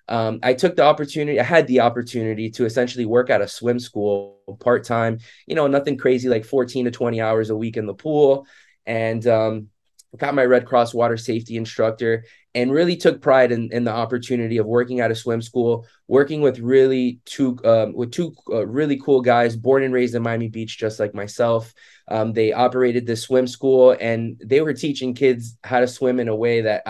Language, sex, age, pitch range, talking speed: English, male, 20-39, 115-135 Hz, 210 wpm